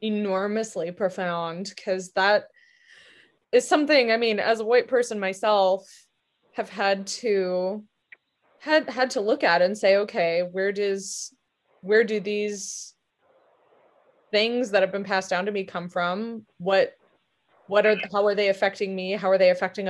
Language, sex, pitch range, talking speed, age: English, female, 185-215 Hz, 155 wpm, 20-39